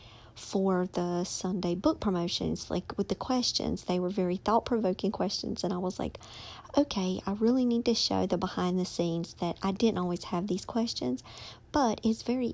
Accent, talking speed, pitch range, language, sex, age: American, 180 wpm, 170-210 Hz, English, male, 50-69